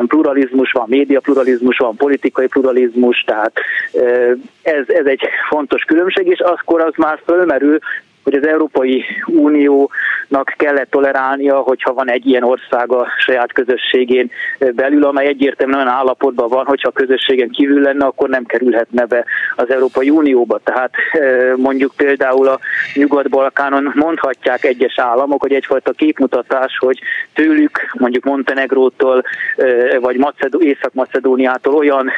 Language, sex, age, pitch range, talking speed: Hungarian, male, 30-49, 130-155 Hz, 125 wpm